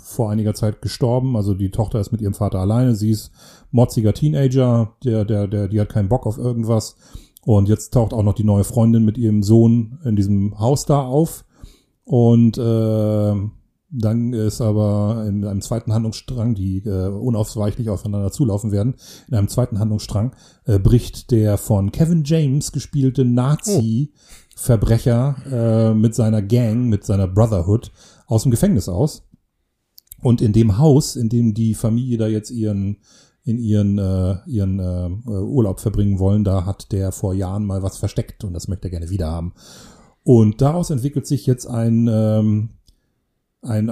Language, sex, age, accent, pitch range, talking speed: German, male, 30-49, German, 105-125 Hz, 165 wpm